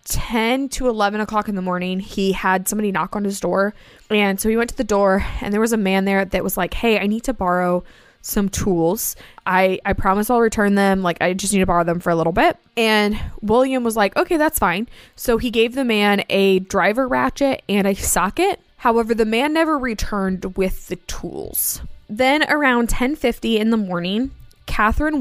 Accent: American